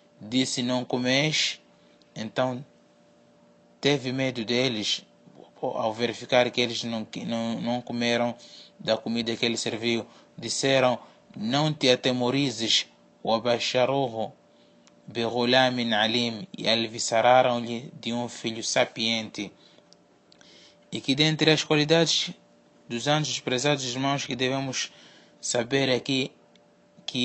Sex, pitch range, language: male, 120-135 Hz, Portuguese